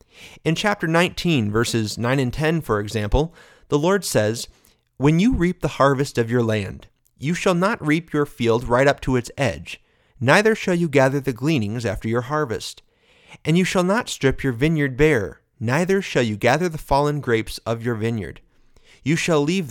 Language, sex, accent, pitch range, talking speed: English, male, American, 115-160 Hz, 185 wpm